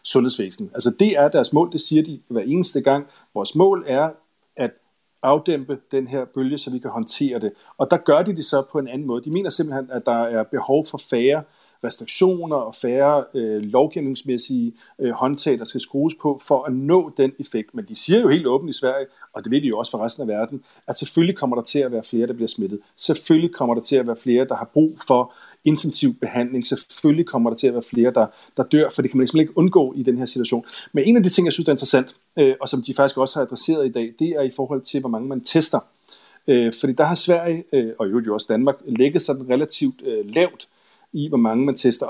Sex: male